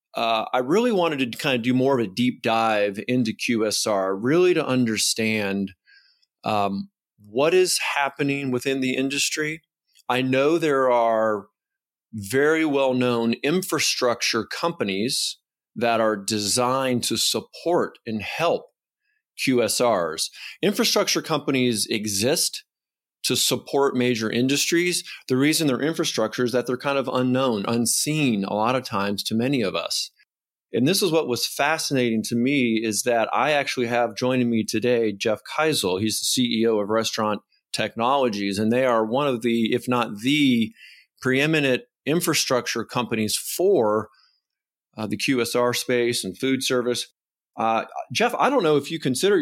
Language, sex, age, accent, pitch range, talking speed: English, male, 30-49, American, 115-150 Hz, 145 wpm